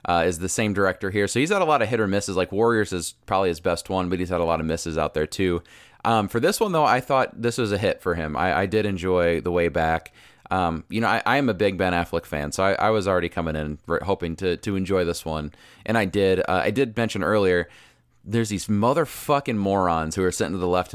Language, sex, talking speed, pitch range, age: English, male, 270 wpm, 85-100 Hz, 30-49